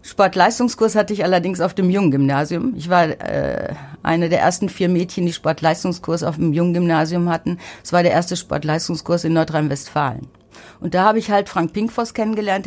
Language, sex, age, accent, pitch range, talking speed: German, female, 50-69, German, 160-205 Hz, 170 wpm